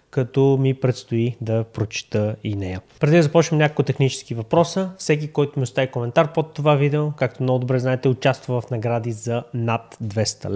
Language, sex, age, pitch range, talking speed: Bulgarian, male, 20-39, 115-140 Hz, 175 wpm